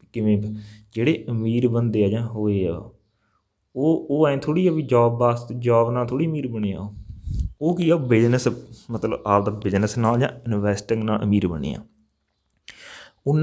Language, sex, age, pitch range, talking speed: Punjabi, male, 20-39, 105-125 Hz, 155 wpm